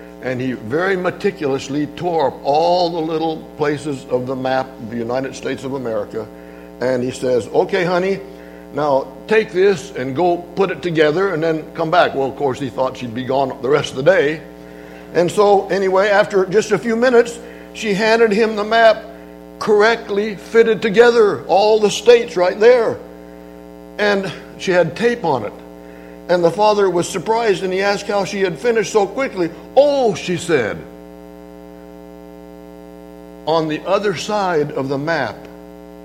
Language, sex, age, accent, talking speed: English, male, 60-79, American, 165 wpm